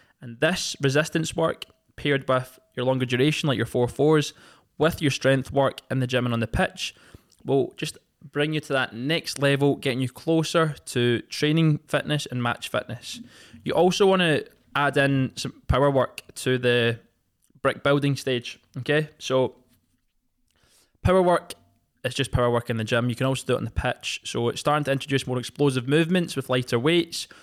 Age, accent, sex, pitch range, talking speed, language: 20-39, British, male, 125-150 Hz, 185 wpm, English